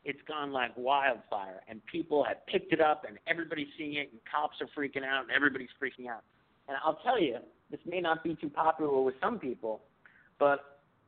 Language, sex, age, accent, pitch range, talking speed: English, male, 50-69, American, 120-155 Hz, 200 wpm